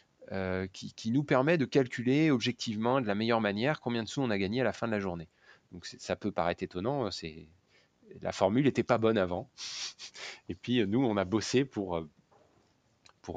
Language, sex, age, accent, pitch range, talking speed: French, male, 30-49, French, 110-140 Hz, 200 wpm